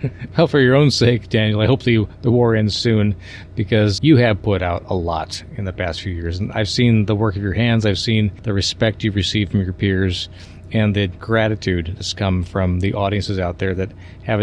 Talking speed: 225 wpm